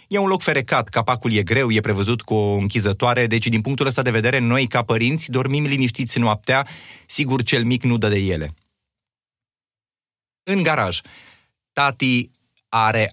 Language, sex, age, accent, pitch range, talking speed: Romanian, male, 30-49, native, 110-140 Hz, 160 wpm